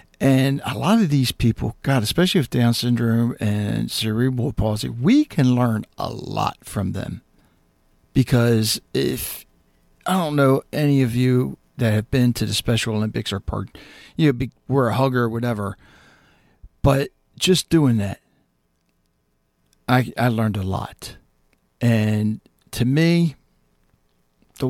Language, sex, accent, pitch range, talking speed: English, male, American, 105-130 Hz, 145 wpm